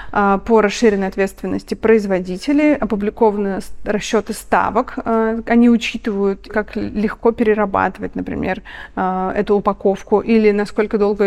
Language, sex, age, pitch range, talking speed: Russian, female, 30-49, 195-225 Hz, 95 wpm